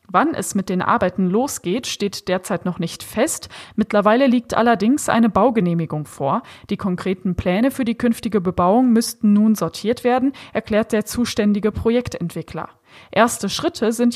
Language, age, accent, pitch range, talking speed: German, 20-39, German, 190-235 Hz, 150 wpm